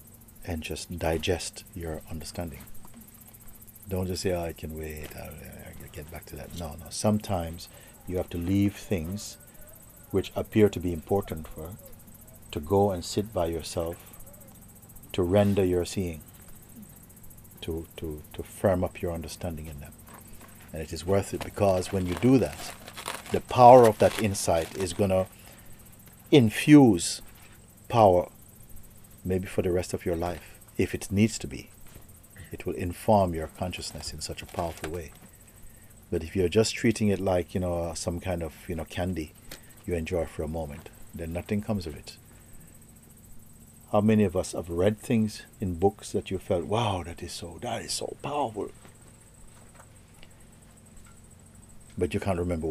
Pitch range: 85-110 Hz